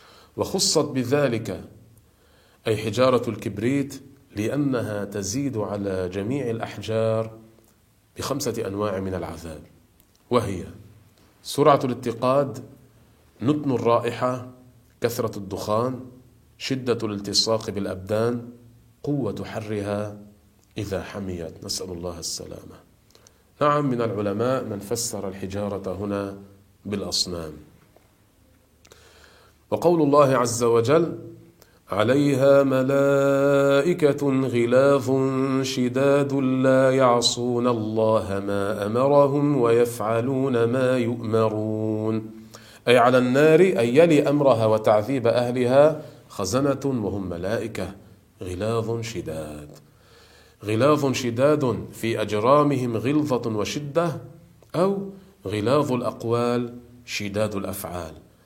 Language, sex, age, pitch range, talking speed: Arabic, male, 40-59, 105-130 Hz, 80 wpm